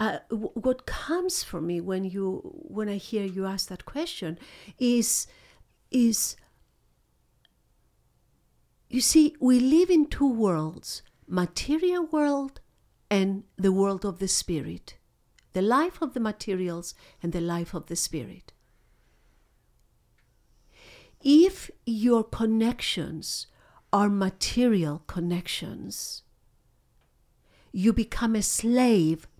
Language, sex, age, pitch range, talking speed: English, female, 60-79, 180-245 Hz, 105 wpm